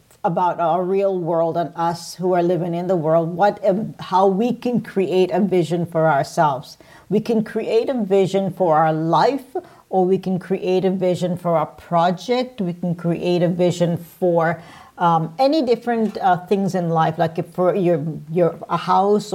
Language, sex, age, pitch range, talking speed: English, female, 50-69, 170-195 Hz, 180 wpm